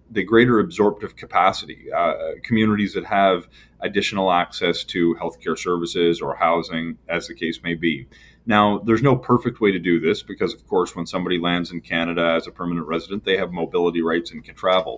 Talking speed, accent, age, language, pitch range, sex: 190 wpm, American, 30-49, English, 85-100 Hz, male